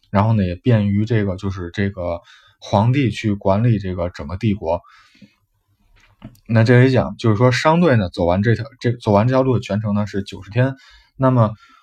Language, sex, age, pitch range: Chinese, male, 20-39, 100-130 Hz